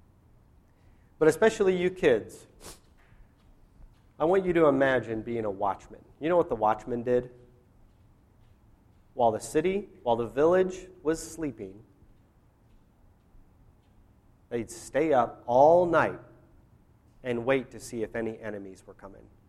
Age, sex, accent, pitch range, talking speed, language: 30-49, male, American, 100-145 Hz, 125 wpm, English